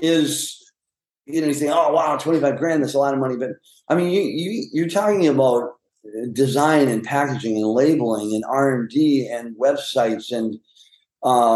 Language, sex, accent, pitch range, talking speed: English, male, American, 125-160 Hz, 185 wpm